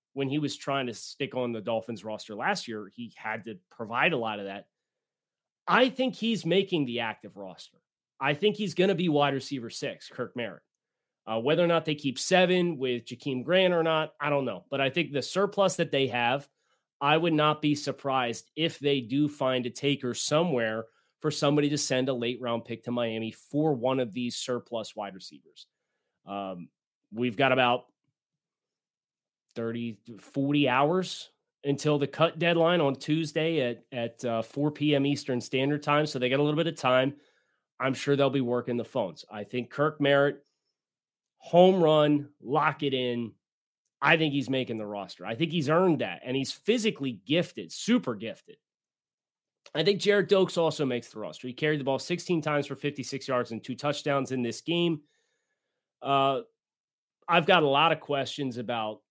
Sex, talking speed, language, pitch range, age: male, 185 wpm, English, 120-155 Hz, 30-49